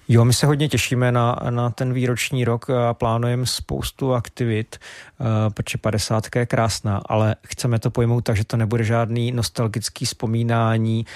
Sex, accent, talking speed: male, native, 160 wpm